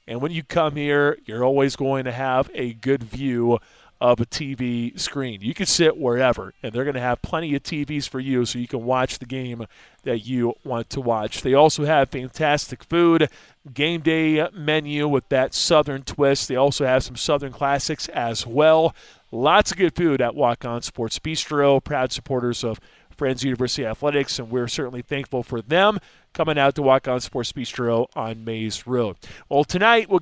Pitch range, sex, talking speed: 125-155 Hz, male, 190 wpm